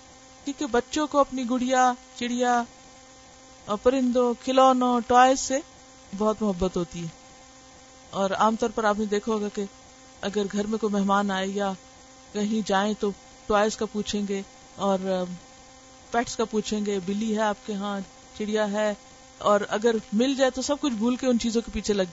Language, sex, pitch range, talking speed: Urdu, female, 215-260 Hz, 170 wpm